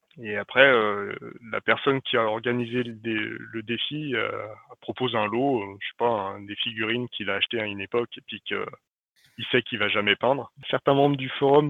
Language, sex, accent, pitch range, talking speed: French, male, French, 110-130 Hz, 225 wpm